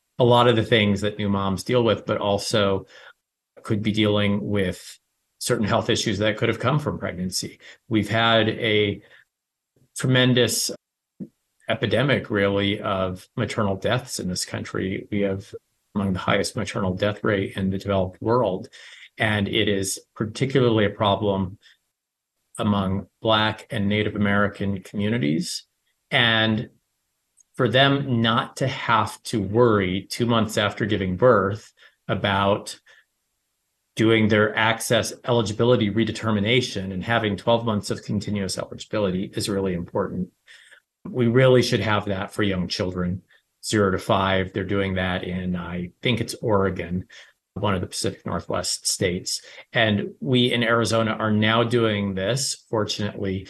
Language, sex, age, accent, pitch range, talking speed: English, male, 40-59, American, 100-115 Hz, 140 wpm